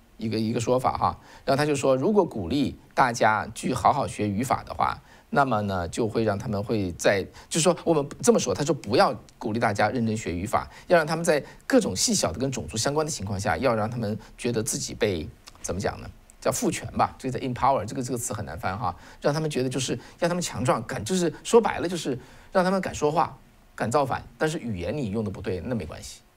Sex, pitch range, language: male, 105-150 Hz, Chinese